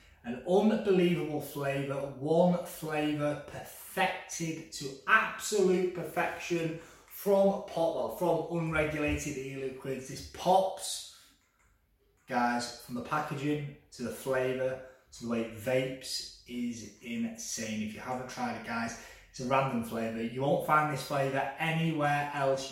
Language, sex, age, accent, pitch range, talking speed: English, male, 20-39, British, 130-165 Hz, 125 wpm